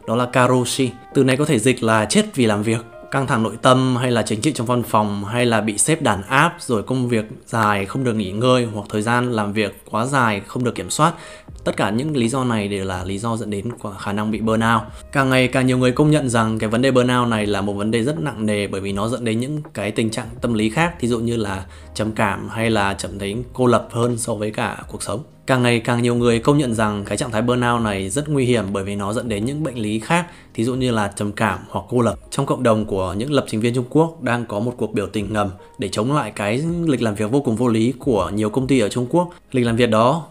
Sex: male